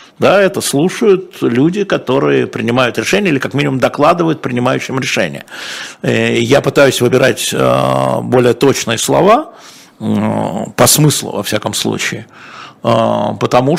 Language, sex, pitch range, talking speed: Russian, male, 115-160 Hz, 110 wpm